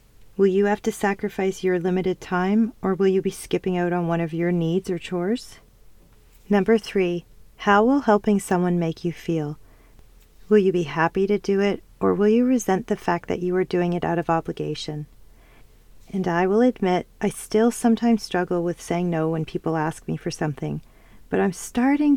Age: 40-59